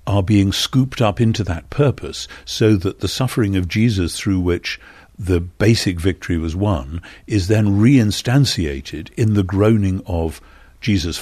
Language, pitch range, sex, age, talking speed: English, 85-110 Hz, male, 60-79, 150 wpm